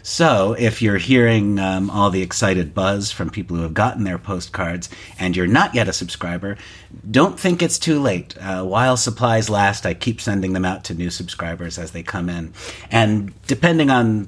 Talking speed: 195 wpm